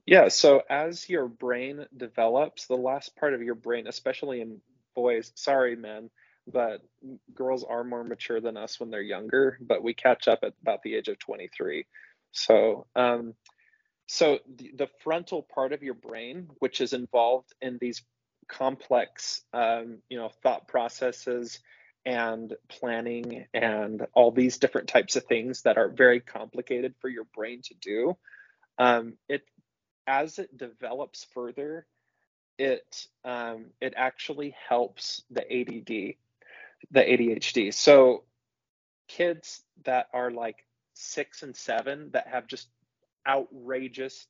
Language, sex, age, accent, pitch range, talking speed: English, male, 20-39, American, 120-135 Hz, 140 wpm